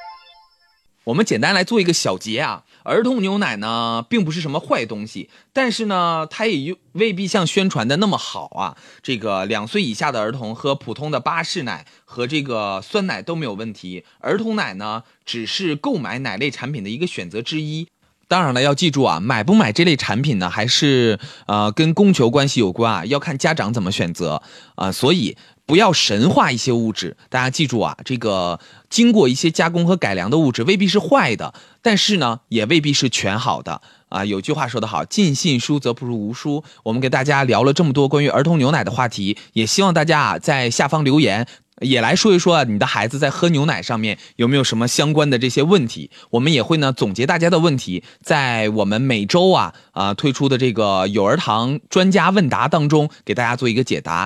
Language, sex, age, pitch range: Chinese, male, 30-49, 115-175 Hz